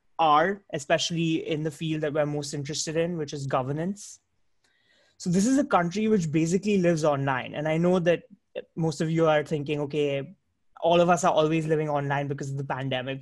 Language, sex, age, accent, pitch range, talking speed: English, male, 20-39, Indian, 145-170 Hz, 195 wpm